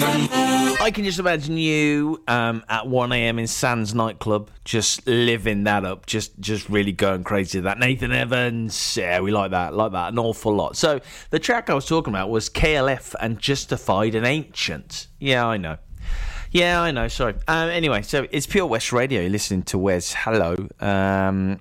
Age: 30-49